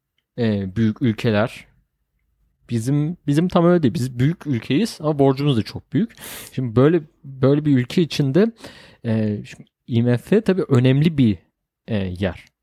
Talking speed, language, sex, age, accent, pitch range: 125 wpm, Turkish, male, 40-59, native, 105-150 Hz